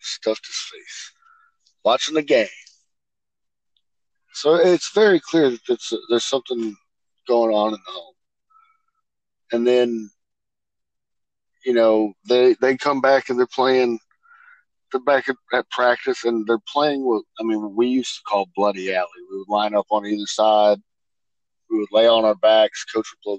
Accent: American